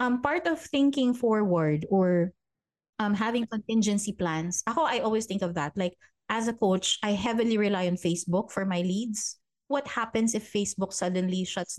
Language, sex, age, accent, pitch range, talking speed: Filipino, female, 20-39, native, 180-230 Hz, 175 wpm